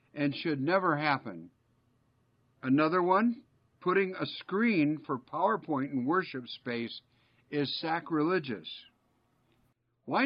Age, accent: 60-79, American